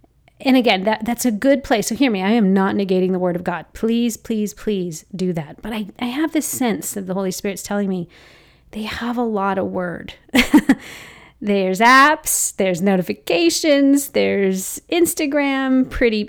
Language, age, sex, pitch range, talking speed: English, 40-59, female, 195-245 Hz, 175 wpm